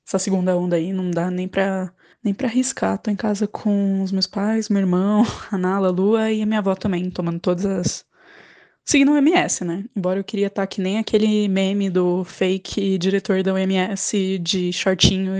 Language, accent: Portuguese, Brazilian